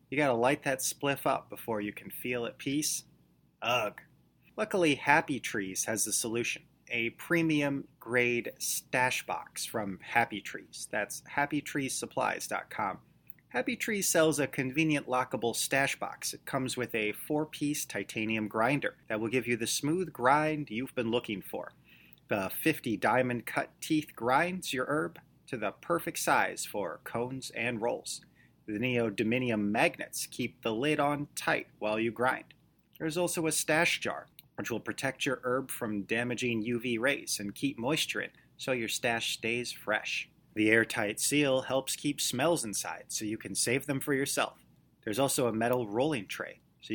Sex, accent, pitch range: male, American, 110-145 Hz